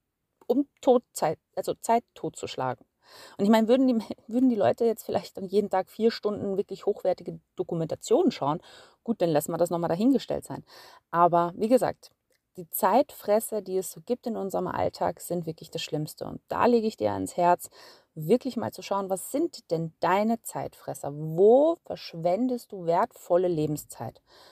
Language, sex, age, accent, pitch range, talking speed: German, female, 30-49, German, 165-230 Hz, 160 wpm